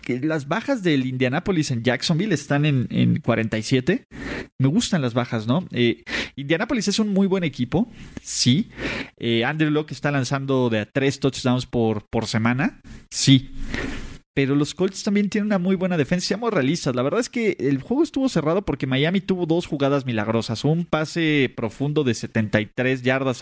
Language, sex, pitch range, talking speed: Spanish, male, 125-170 Hz, 175 wpm